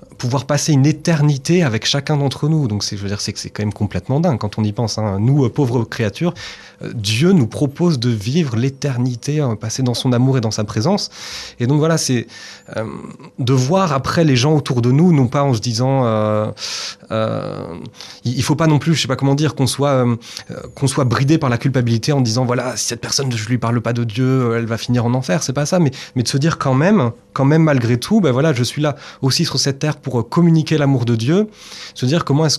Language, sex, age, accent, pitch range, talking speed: French, male, 30-49, French, 120-150 Hz, 245 wpm